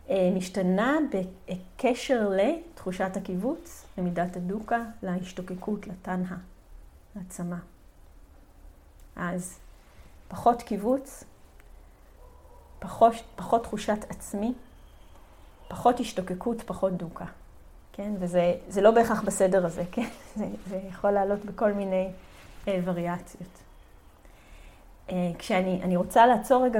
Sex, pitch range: female, 180-225 Hz